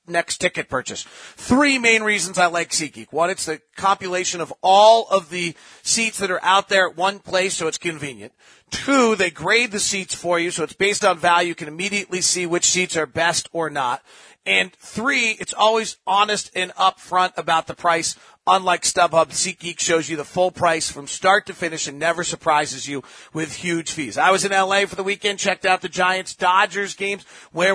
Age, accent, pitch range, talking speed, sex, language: 40-59, American, 170-205 Hz, 205 wpm, male, English